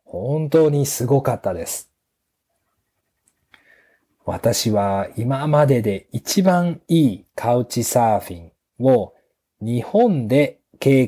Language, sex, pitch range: Japanese, male, 110-150 Hz